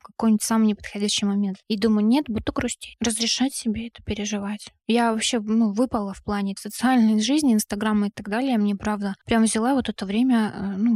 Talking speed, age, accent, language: 185 wpm, 20-39, native, Russian